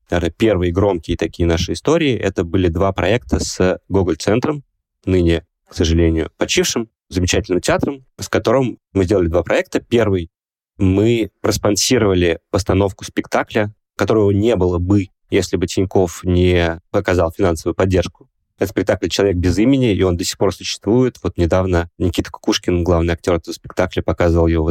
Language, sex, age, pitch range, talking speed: Russian, male, 20-39, 90-110 Hz, 150 wpm